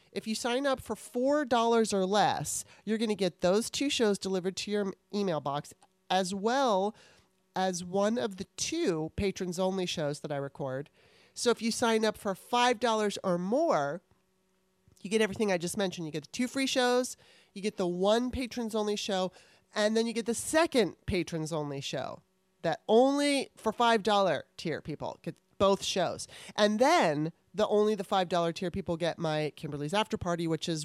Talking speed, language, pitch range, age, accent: 175 wpm, English, 170-220 Hz, 30-49, American